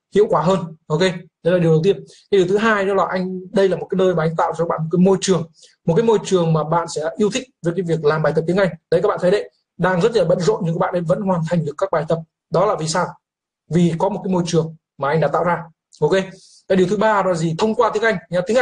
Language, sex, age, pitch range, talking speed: Vietnamese, male, 20-39, 165-200 Hz, 305 wpm